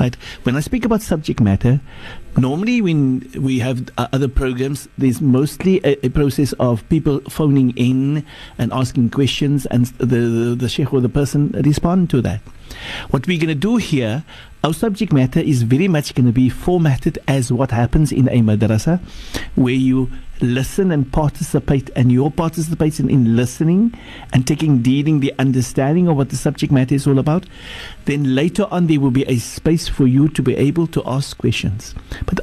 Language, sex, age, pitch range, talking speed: English, male, 60-79, 130-165 Hz, 180 wpm